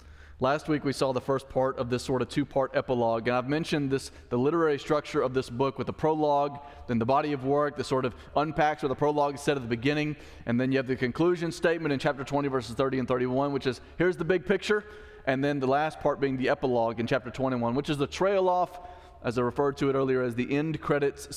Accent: American